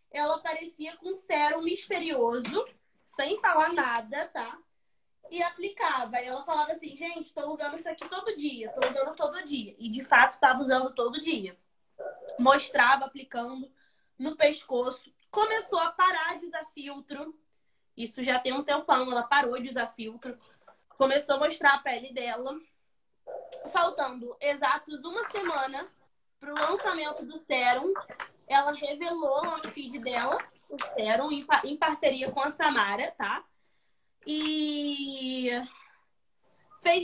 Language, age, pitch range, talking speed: Portuguese, 20-39, 265-325 Hz, 135 wpm